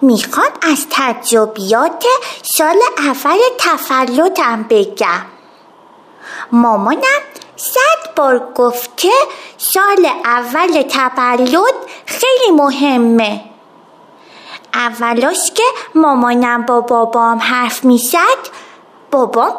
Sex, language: female, Persian